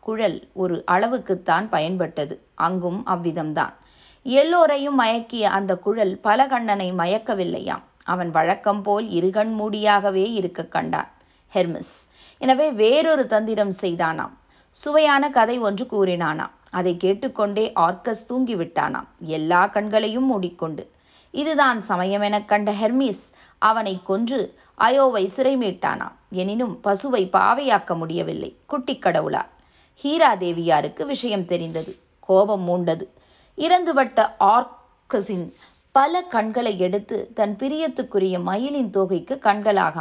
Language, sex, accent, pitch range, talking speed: Tamil, female, native, 185-245 Hz, 95 wpm